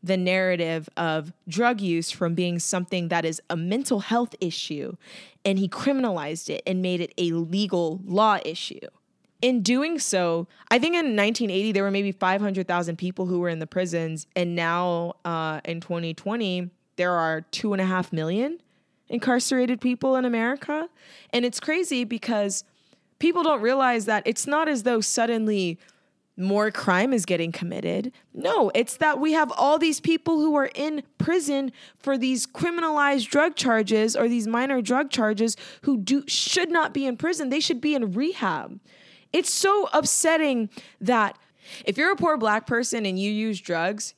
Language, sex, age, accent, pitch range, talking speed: English, female, 20-39, American, 185-265 Hz, 165 wpm